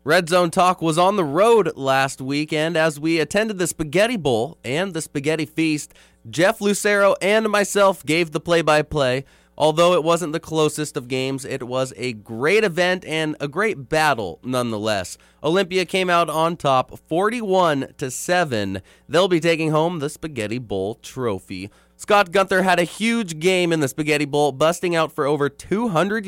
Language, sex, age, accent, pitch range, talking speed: English, male, 20-39, American, 135-185 Hz, 175 wpm